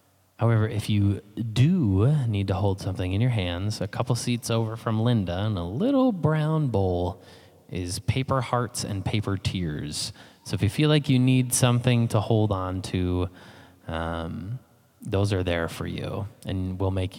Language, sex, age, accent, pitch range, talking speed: English, male, 20-39, American, 95-125 Hz, 170 wpm